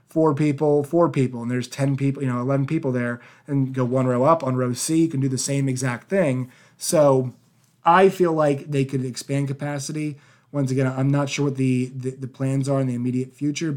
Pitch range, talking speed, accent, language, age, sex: 130-145 Hz, 220 wpm, American, English, 30-49, male